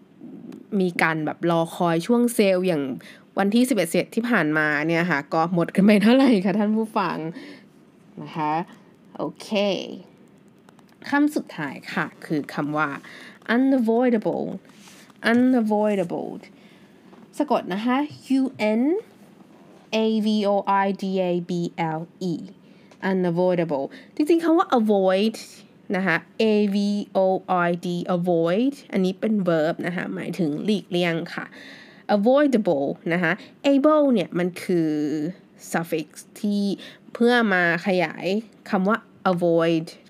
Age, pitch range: 20-39, 170-225 Hz